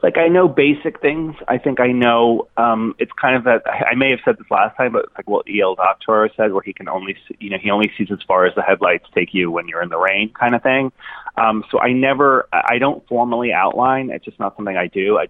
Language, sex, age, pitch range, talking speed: English, male, 30-49, 100-135 Hz, 265 wpm